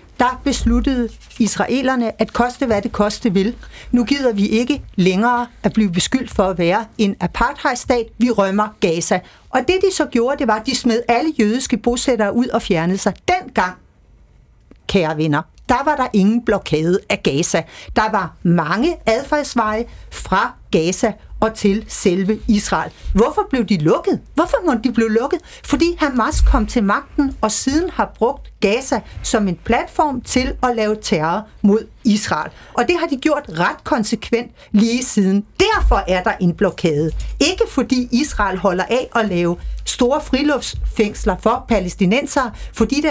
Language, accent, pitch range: Danish, native, 205-265 Hz